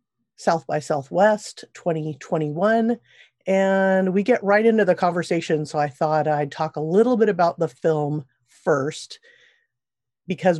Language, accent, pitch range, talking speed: English, American, 155-195 Hz, 135 wpm